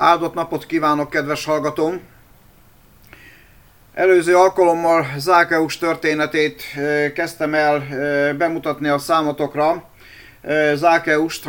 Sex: male